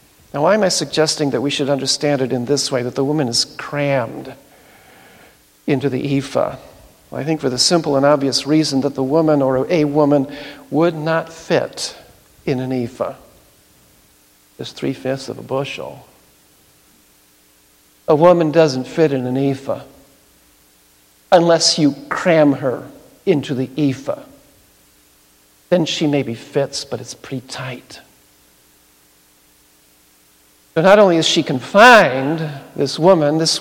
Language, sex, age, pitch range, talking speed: English, male, 60-79, 125-170 Hz, 135 wpm